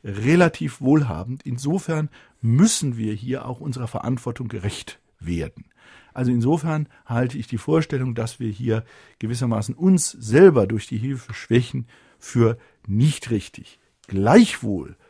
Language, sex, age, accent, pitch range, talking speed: German, male, 50-69, German, 115-160 Hz, 125 wpm